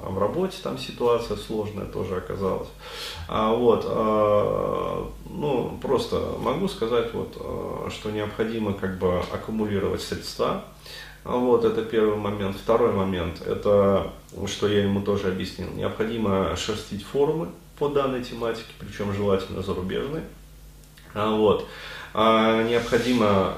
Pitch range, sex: 95-115 Hz, male